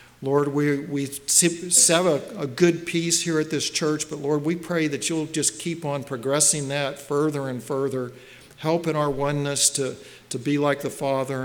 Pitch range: 125-145 Hz